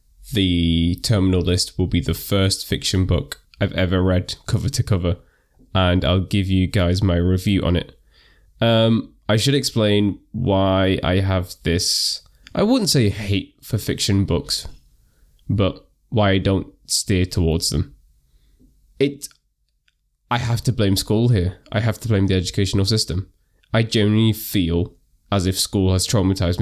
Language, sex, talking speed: English, male, 155 wpm